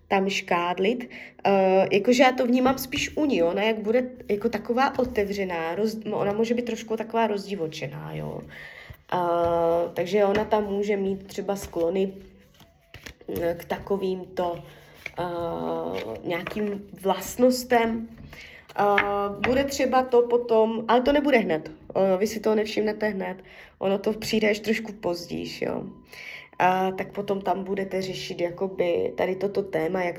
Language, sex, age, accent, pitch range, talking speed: Czech, female, 20-39, native, 185-230 Hz, 140 wpm